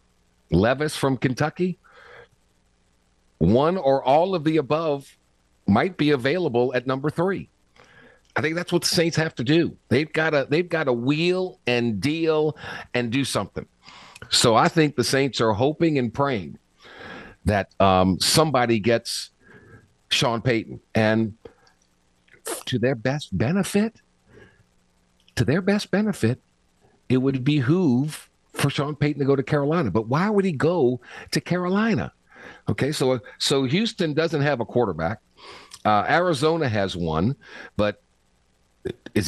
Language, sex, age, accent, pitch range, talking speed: English, male, 50-69, American, 110-165 Hz, 135 wpm